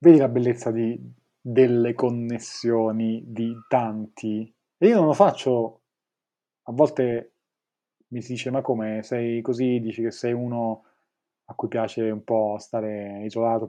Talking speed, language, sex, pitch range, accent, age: 145 wpm, Italian, male, 115-135 Hz, native, 30-49